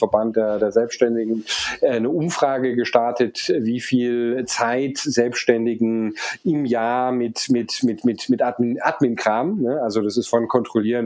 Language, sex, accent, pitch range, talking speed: German, male, German, 115-140 Hz, 115 wpm